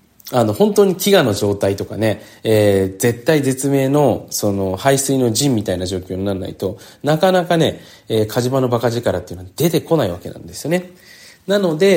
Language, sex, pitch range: Japanese, male, 100-150 Hz